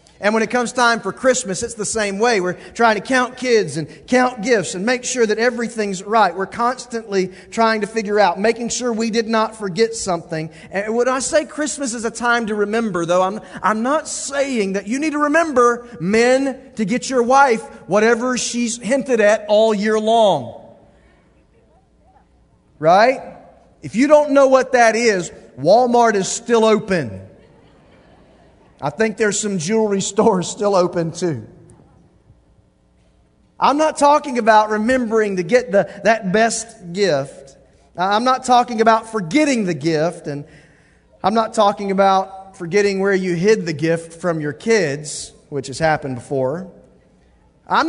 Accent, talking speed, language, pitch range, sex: American, 160 wpm, English, 170-235 Hz, male